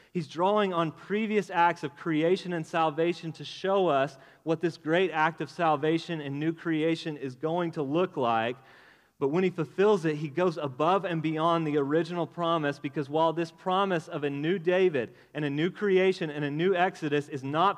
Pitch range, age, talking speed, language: 150-185 Hz, 30-49, 190 wpm, English